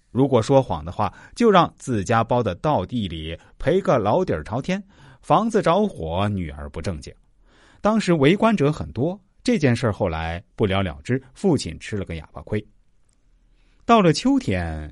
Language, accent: Chinese, native